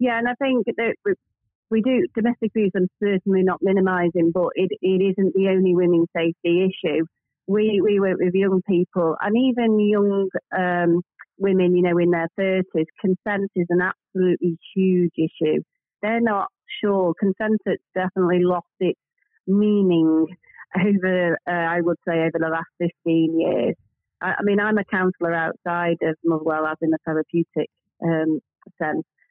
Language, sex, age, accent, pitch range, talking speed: English, female, 30-49, British, 165-190 Hz, 160 wpm